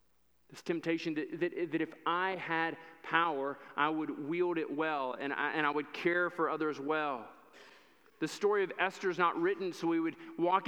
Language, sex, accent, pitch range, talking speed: English, male, American, 160-200 Hz, 190 wpm